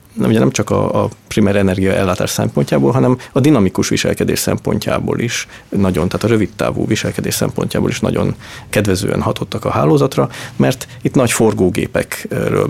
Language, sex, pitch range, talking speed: Hungarian, male, 95-120 Hz, 140 wpm